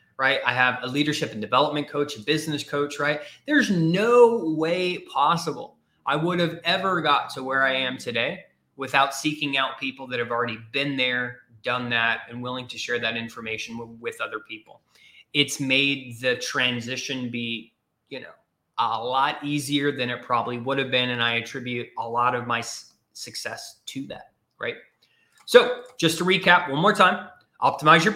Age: 20-39